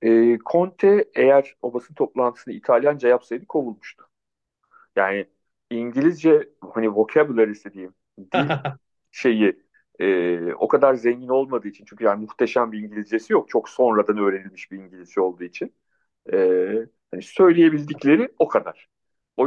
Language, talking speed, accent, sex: Turkish, 115 wpm, native, male